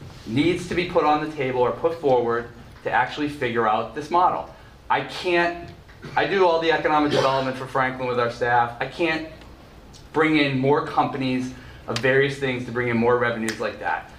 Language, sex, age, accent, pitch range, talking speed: English, male, 30-49, American, 120-145 Hz, 190 wpm